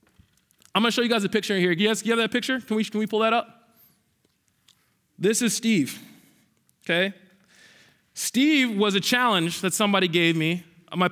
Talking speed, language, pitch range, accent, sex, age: 190 wpm, English, 160-215 Hz, American, male, 20-39